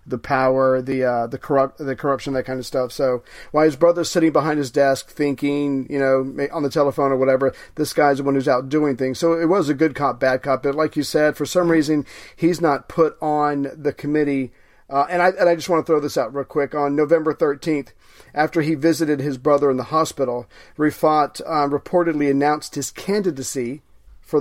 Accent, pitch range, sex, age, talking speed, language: American, 135-155 Hz, male, 40-59, 215 wpm, English